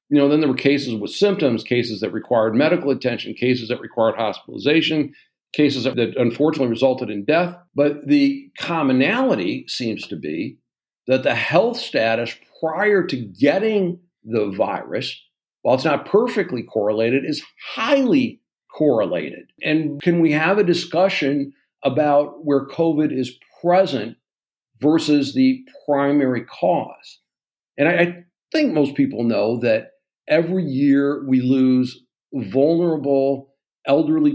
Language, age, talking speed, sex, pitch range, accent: English, 50-69, 130 wpm, male, 125-170 Hz, American